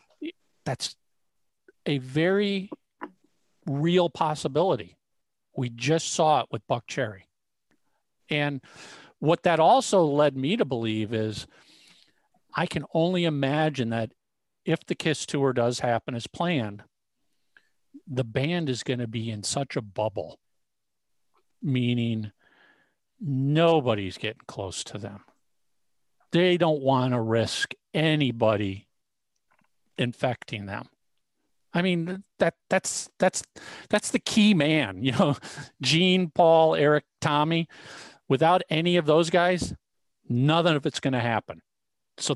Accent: American